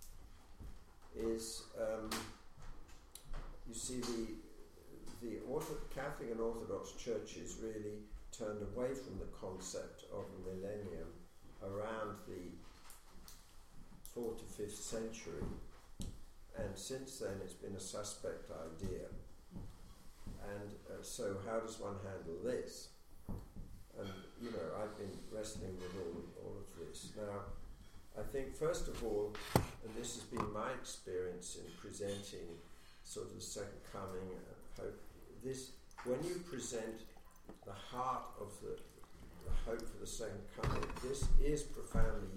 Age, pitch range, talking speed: 50-69, 90-115 Hz, 125 wpm